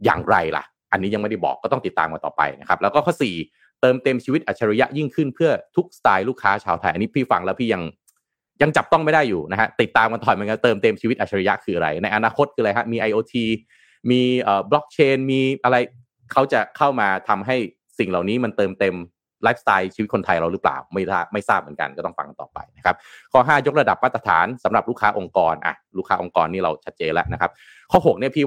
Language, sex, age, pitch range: Thai, male, 30-49, 100-130 Hz